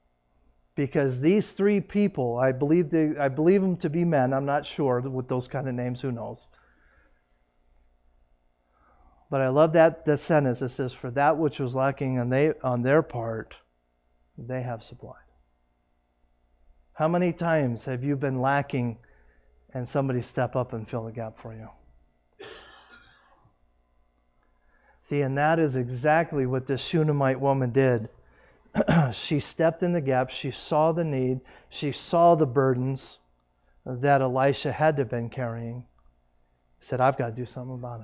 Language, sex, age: English, male, 40-59